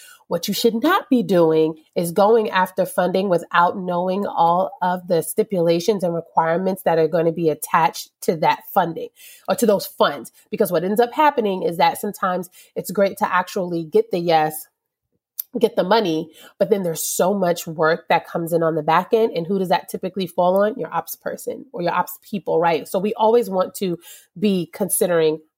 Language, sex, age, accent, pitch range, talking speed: English, female, 30-49, American, 175-230 Hz, 195 wpm